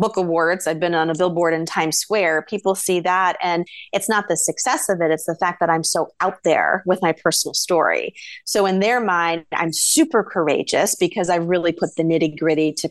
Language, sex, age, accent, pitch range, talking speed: English, female, 30-49, American, 165-225 Hz, 220 wpm